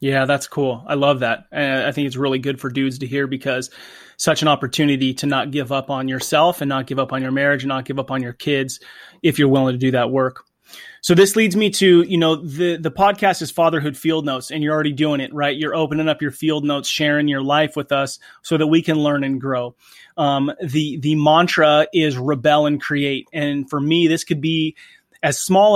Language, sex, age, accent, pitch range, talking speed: English, male, 30-49, American, 140-155 Hz, 235 wpm